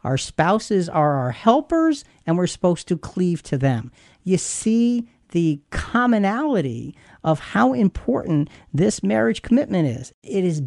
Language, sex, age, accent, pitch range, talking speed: English, male, 50-69, American, 135-195 Hz, 140 wpm